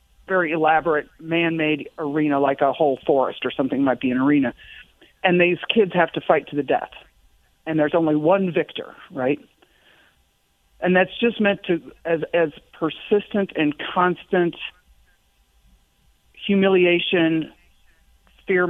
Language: English